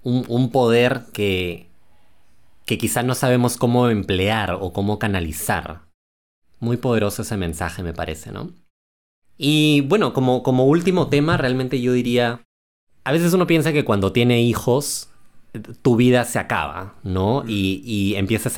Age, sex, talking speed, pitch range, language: 20-39, male, 145 wpm, 95-125 Hz, Spanish